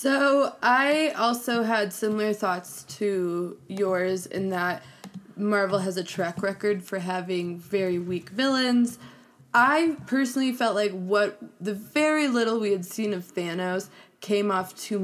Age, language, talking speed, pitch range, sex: 20-39, English, 145 wpm, 190-235 Hz, female